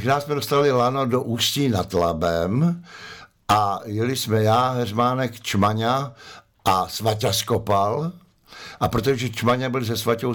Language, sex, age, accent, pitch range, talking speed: Czech, male, 60-79, native, 100-120 Hz, 140 wpm